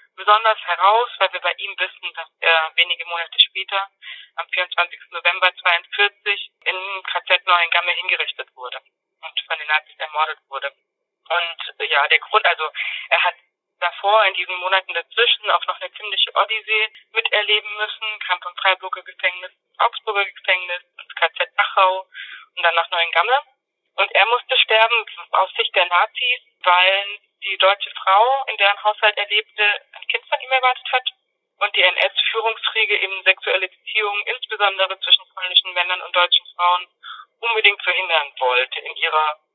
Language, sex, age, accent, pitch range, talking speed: German, female, 20-39, German, 175-210 Hz, 150 wpm